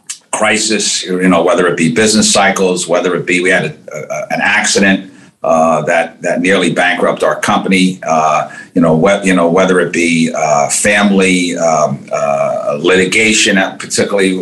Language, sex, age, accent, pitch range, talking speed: English, male, 50-69, American, 90-100 Hz, 165 wpm